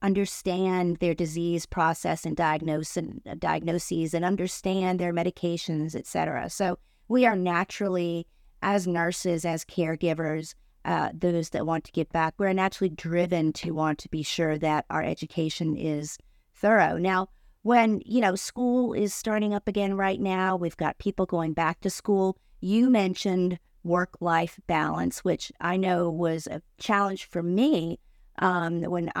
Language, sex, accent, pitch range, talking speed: English, female, American, 165-200 Hz, 155 wpm